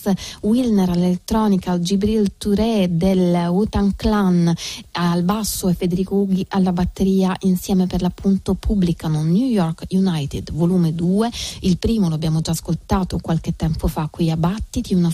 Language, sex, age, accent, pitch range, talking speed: Italian, female, 30-49, native, 170-215 Hz, 145 wpm